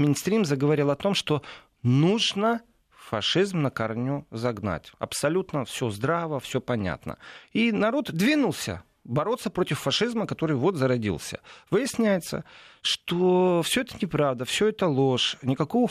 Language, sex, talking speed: Russian, male, 125 wpm